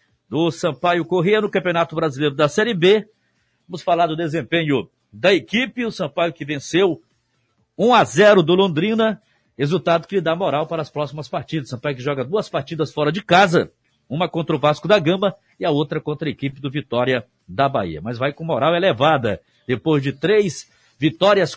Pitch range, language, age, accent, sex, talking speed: 130-180 Hz, Portuguese, 50-69, Brazilian, male, 180 wpm